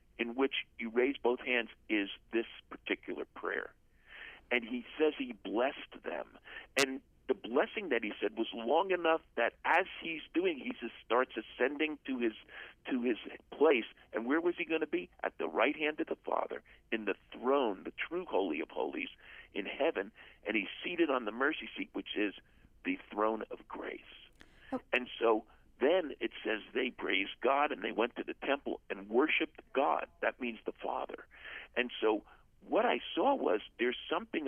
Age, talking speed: 50-69, 170 wpm